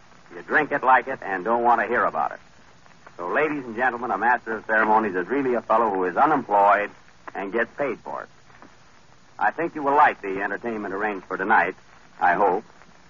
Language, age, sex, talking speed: English, 60-79, male, 200 wpm